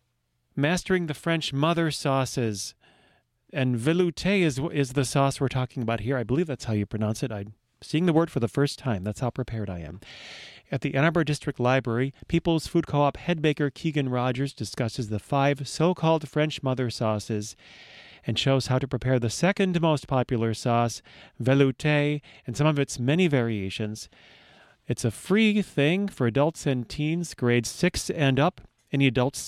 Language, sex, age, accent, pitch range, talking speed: English, male, 40-59, American, 120-155 Hz, 175 wpm